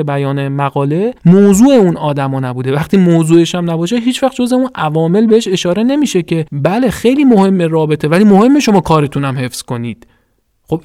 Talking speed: 165 wpm